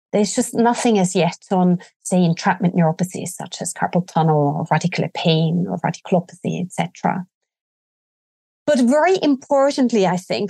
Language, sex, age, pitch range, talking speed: English, female, 30-49, 190-255 Hz, 145 wpm